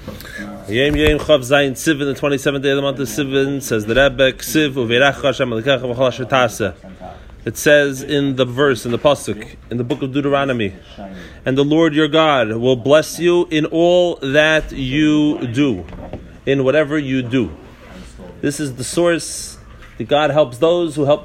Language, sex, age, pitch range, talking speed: English, male, 30-49, 115-155 Hz, 145 wpm